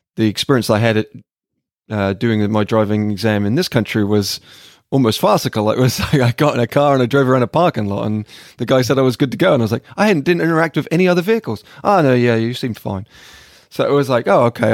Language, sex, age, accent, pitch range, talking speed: English, male, 20-39, British, 110-130 Hz, 260 wpm